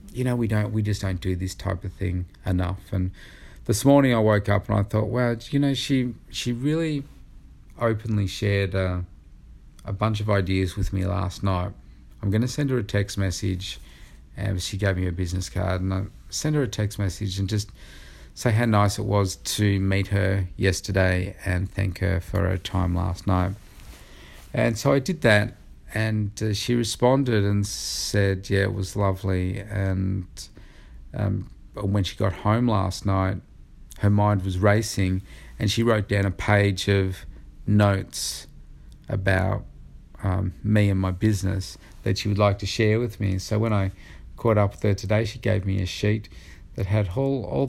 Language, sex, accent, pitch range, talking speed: English, male, Australian, 95-105 Hz, 185 wpm